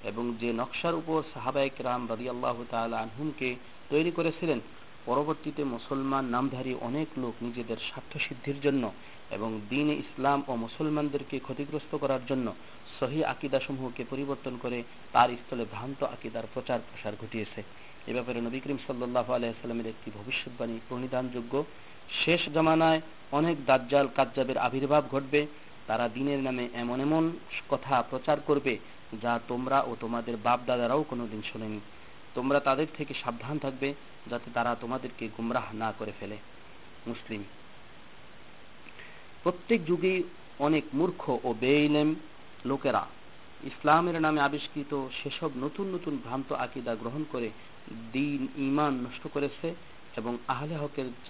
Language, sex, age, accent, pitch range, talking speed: Bengali, male, 40-59, native, 120-150 Hz, 70 wpm